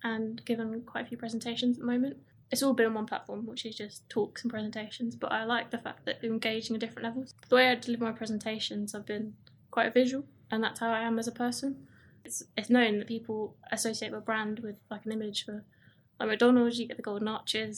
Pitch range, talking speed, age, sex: 215-240 Hz, 235 wpm, 20-39, female